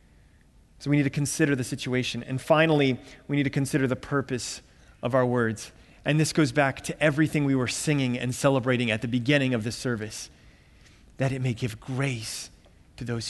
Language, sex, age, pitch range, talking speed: English, male, 30-49, 135-190 Hz, 190 wpm